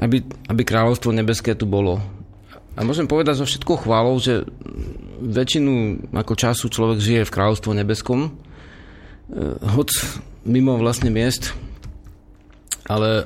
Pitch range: 105-130 Hz